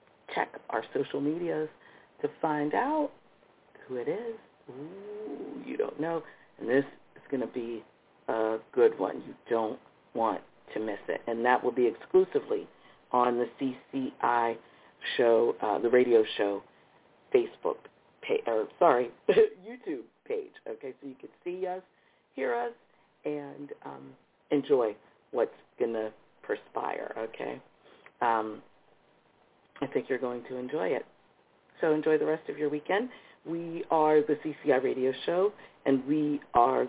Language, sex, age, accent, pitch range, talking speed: English, female, 50-69, American, 130-215 Hz, 145 wpm